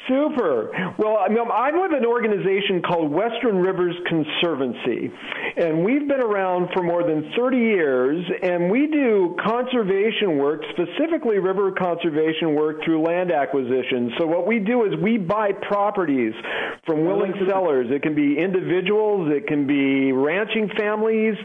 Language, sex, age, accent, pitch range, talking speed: English, male, 50-69, American, 160-205 Hz, 145 wpm